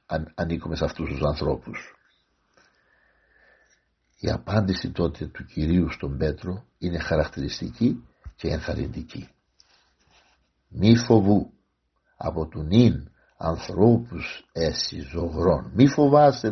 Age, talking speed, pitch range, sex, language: 60-79, 95 wpm, 80-115 Hz, male, Greek